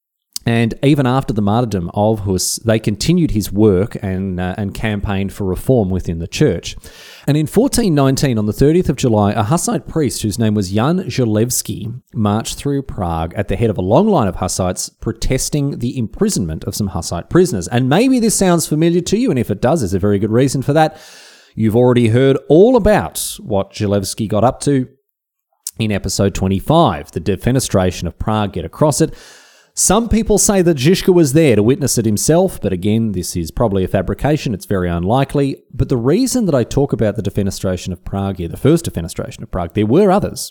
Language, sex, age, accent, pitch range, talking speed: English, male, 30-49, Australian, 100-145 Hz, 195 wpm